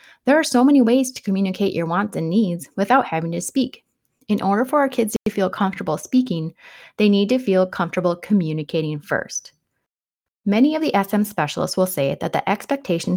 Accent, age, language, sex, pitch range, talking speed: American, 30-49, English, female, 175-230 Hz, 185 wpm